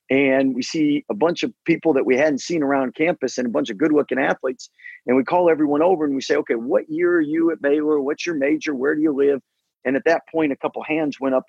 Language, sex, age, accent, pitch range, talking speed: English, male, 40-59, American, 135-175 Hz, 265 wpm